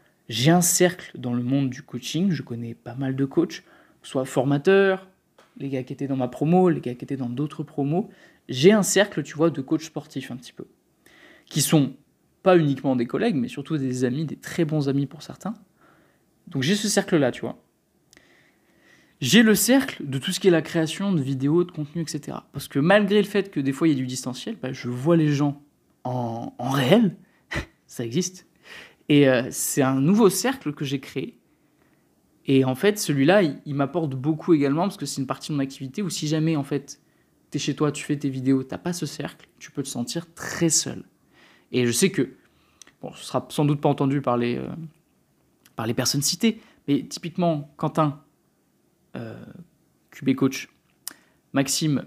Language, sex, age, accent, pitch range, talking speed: French, male, 20-39, French, 135-175 Hz, 205 wpm